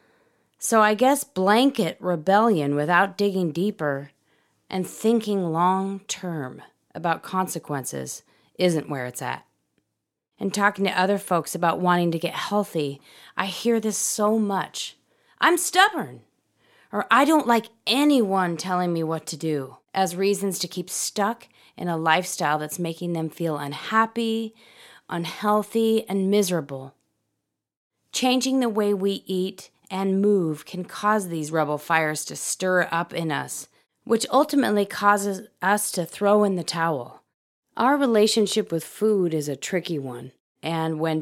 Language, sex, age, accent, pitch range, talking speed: English, female, 30-49, American, 165-210 Hz, 140 wpm